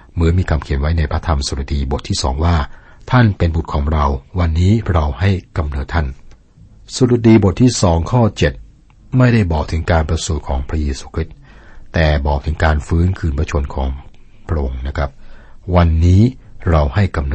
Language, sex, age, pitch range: Thai, male, 60-79, 75-95 Hz